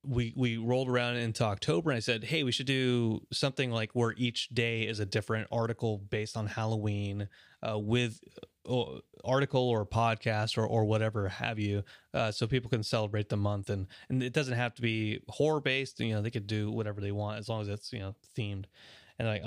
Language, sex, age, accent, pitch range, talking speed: English, male, 30-49, American, 105-125 Hz, 215 wpm